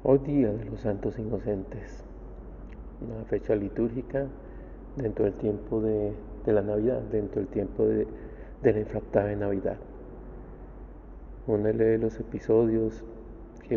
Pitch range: 105-115 Hz